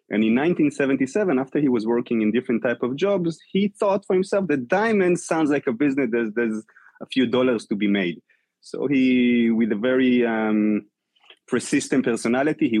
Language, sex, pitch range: English, male, 105-135 Hz